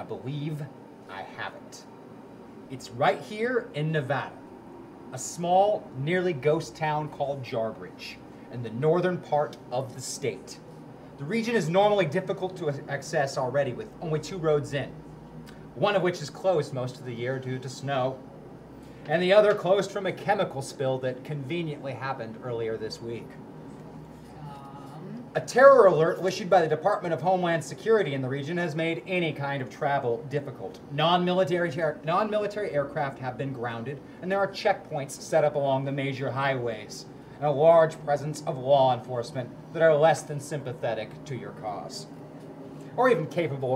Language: English